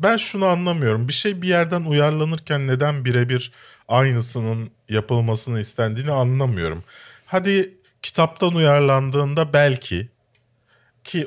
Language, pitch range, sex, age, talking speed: Turkish, 105-135 Hz, male, 40-59, 100 wpm